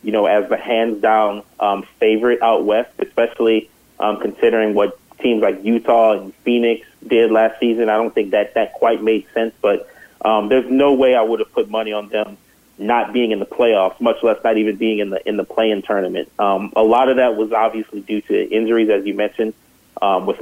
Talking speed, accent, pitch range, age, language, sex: 210 wpm, American, 110-120 Hz, 30-49, English, male